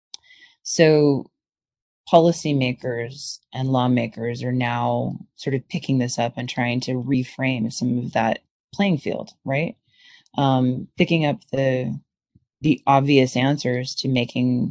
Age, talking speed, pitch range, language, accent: 30-49, 120 wpm, 125-155 Hz, English, American